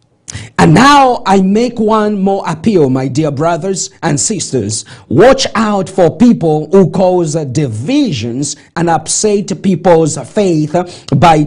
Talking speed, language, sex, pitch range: 125 wpm, English, male, 145-185 Hz